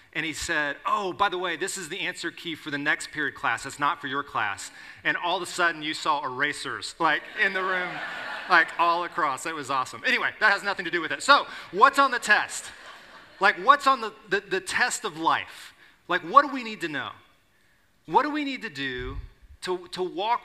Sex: male